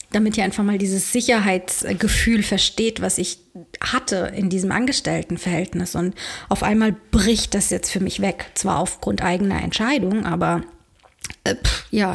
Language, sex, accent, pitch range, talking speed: German, female, German, 185-225 Hz, 150 wpm